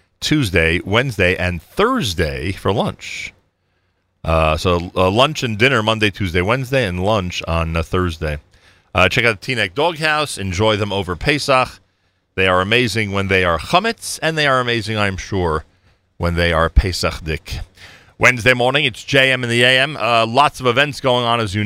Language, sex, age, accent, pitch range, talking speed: English, male, 40-59, American, 90-125 Hz, 175 wpm